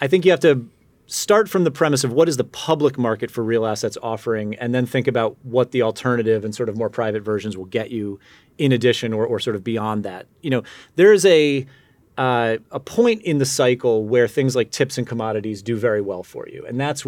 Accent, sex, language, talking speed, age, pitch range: American, male, English, 235 wpm, 30-49, 110-135 Hz